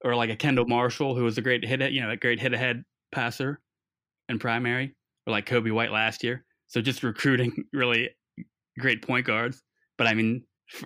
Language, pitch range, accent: English, 115-125 Hz, American